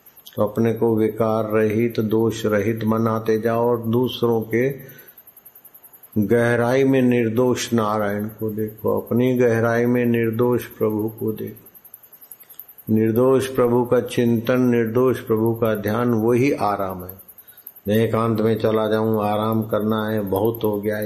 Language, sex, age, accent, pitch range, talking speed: Hindi, male, 50-69, native, 105-120 Hz, 135 wpm